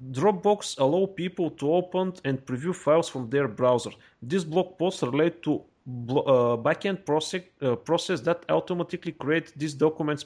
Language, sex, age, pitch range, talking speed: Bulgarian, male, 30-49, 135-185 Hz, 135 wpm